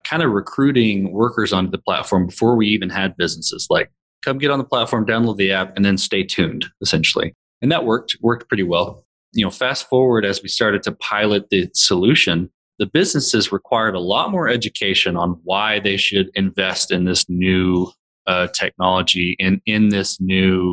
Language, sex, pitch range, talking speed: English, male, 95-110 Hz, 185 wpm